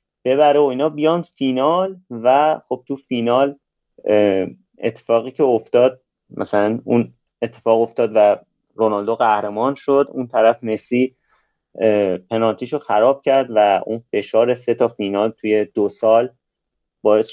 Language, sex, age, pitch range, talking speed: Persian, male, 30-49, 95-130 Hz, 125 wpm